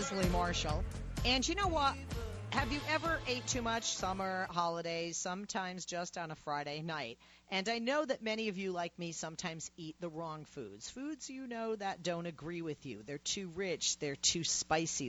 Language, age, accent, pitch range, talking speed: English, 40-59, American, 160-230 Hz, 185 wpm